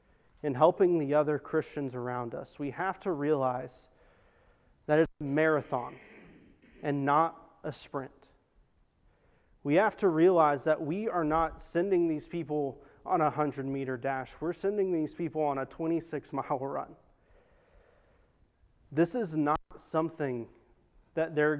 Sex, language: male, English